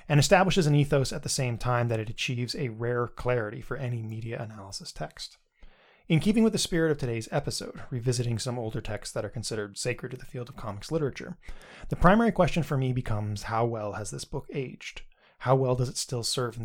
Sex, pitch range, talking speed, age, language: male, 115-150 Hz, 215 wpm, 20-39, English